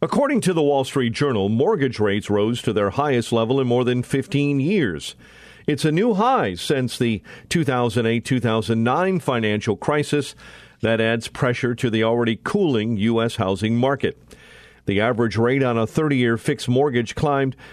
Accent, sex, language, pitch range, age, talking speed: American, male, English, 115-145 Hz, 50-69, 155 wpm